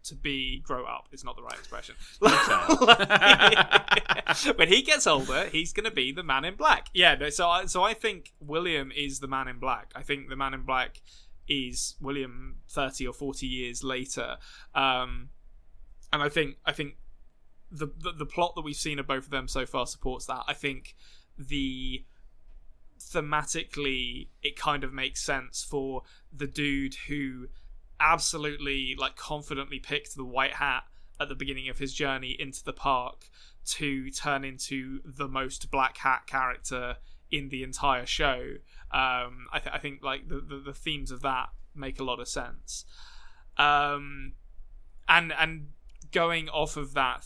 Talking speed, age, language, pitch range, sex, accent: 170 wpm, 20-39, English, 130-145 Hz, male, British